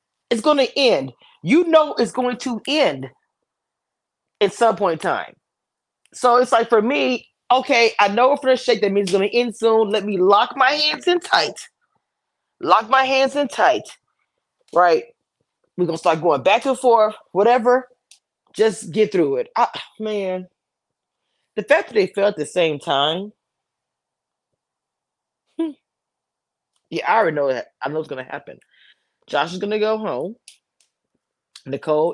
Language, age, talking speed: English, 20-39, 165 wpm